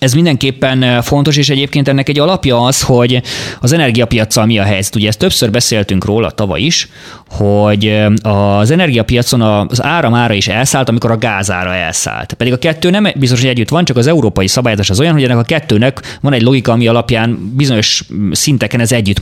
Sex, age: male, 20-39